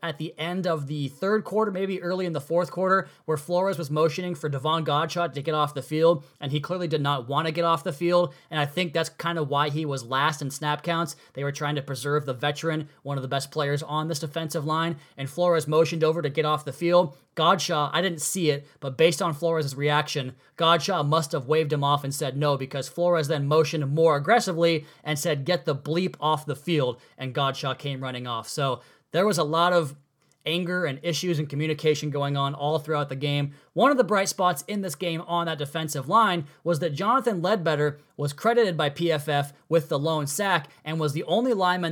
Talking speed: 225 wpm